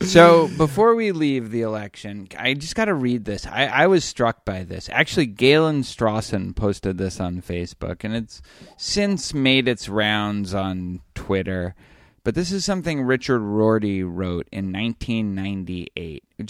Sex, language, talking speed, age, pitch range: male, English, 155 wpm, 20-39, 105-130 Hz